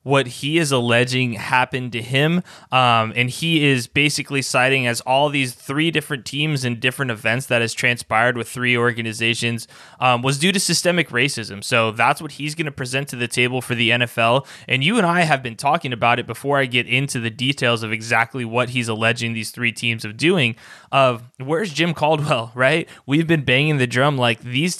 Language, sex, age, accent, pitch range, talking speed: English, male, 20-39, American, 120-145 Hz, 205 wpm